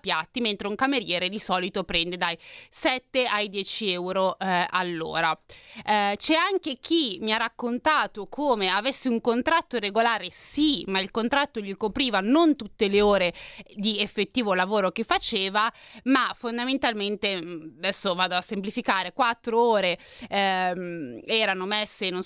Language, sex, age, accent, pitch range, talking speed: Italian, female, 30-49, native, 190-245 Hz, 145 wpm